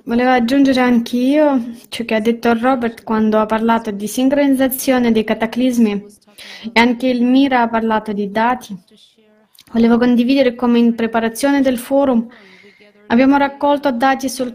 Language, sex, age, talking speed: Italian, female, 20-39, 145 wpm